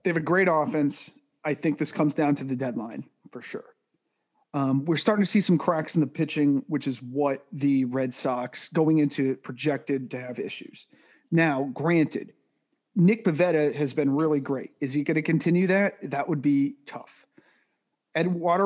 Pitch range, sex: 140-180 Hz, male